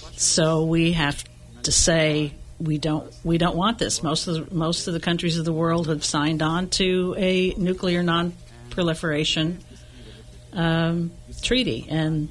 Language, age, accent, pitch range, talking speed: English, 50-69, American, 145-170 Hz, 150 wpm